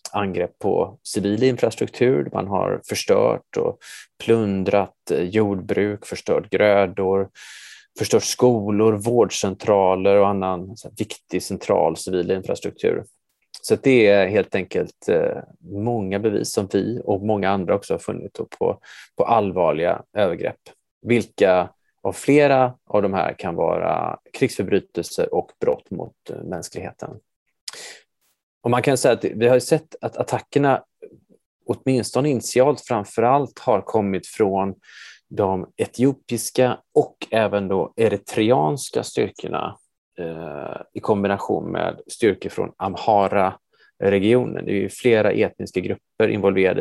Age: 20-39